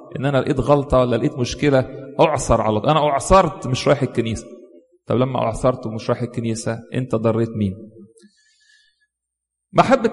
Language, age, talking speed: English, 40-59, 150 wpm